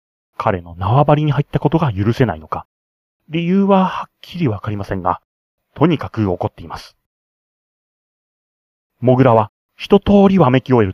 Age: 30-49